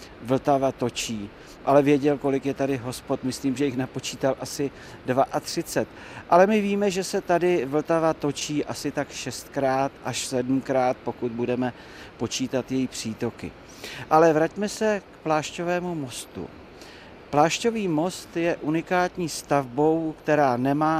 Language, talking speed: Czech, 130 wpm